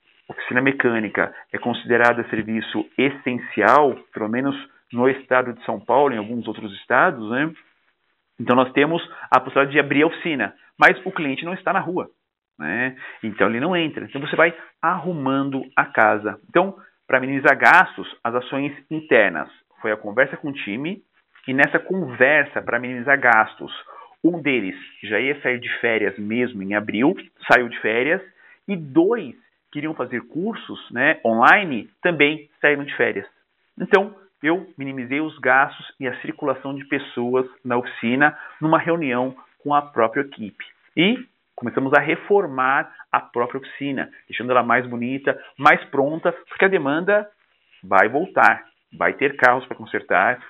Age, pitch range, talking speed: 40-59, 125-160 Hz, 155 wpm